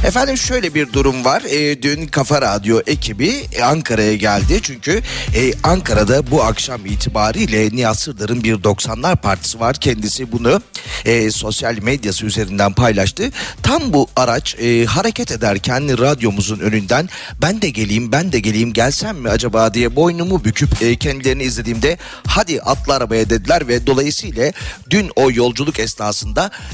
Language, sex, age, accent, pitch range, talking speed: Turkish, male, 40-59, native, 110-145 Hz, 130 wpm